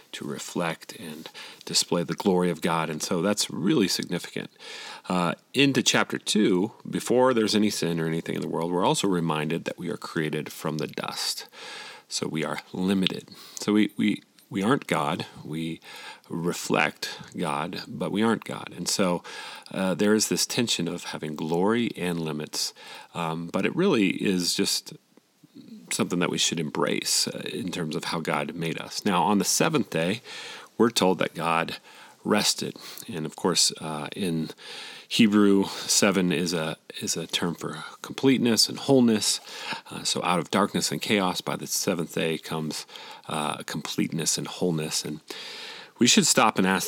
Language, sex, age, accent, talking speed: English, male, 40-59, American, 170 wpm